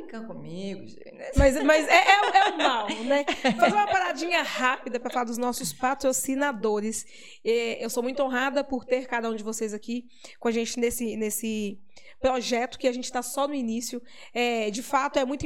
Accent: Brazilian